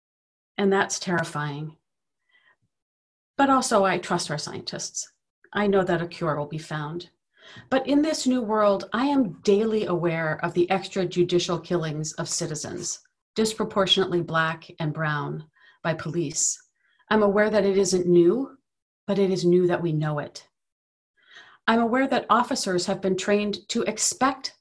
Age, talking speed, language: 40-59, 150 wpm, English